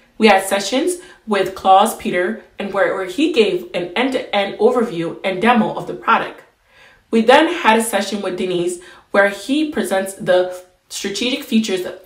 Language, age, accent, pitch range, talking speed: German, 20-39, American, 185-230 Hz, 165 wpm